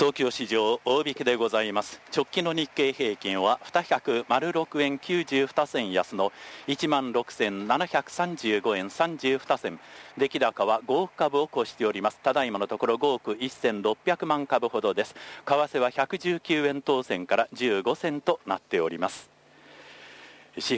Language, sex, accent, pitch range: Japanese, male, native, 120-160 Hz